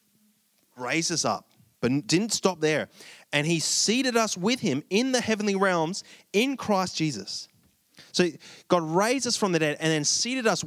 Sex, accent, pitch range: male, Australian, 135-180 Hz